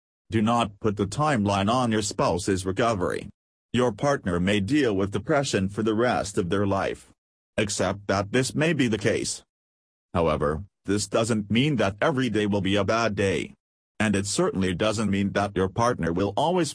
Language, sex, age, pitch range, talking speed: English, male, 40-59, 95-115 Hz, 180 wpm